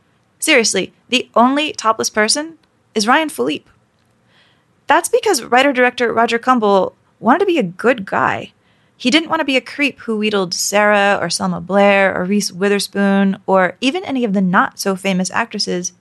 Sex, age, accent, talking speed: female, 20-39, American, 155 wpm